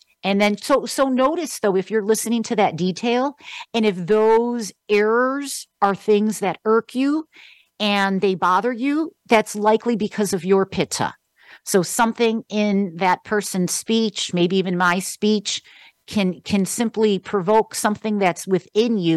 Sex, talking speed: female, 155 wpm